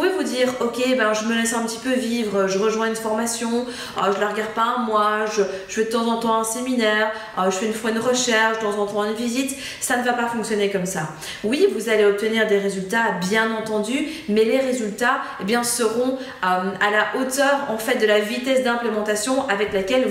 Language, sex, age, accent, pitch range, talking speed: French, female, 20-39, French, 210-250 Hz, 230 wpm